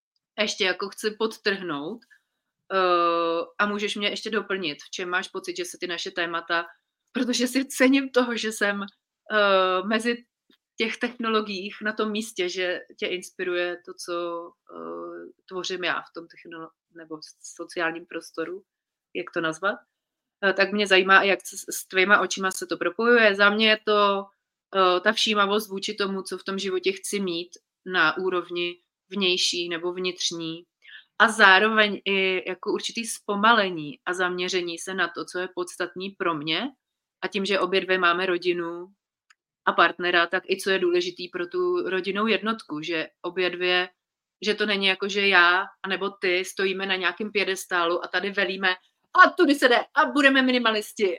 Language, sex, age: Czech, female, 30-49